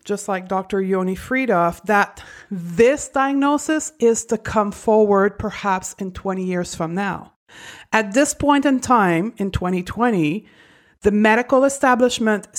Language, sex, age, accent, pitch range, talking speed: English, female, 50-69, American, 190-240 Hz, 135 wpm